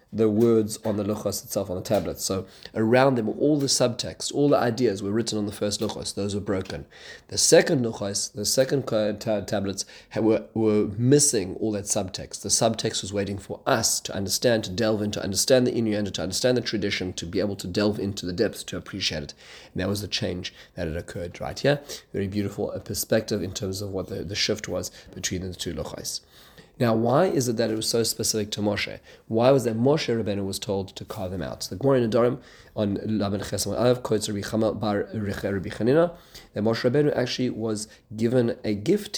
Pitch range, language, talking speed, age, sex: 100-115 Hz, English, 210 wpm, 30-49, male